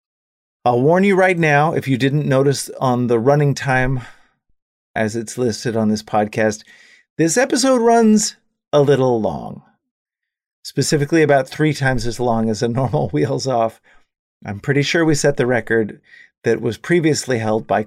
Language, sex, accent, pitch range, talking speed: English, male, American, 110-150 Hz, 160 wpm